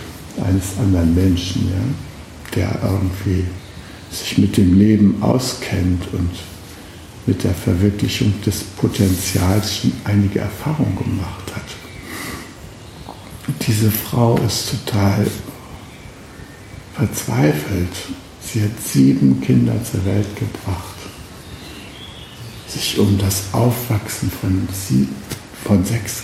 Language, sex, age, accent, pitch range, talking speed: German, male, 60-79, German, 95-110 Hz, 90 wpm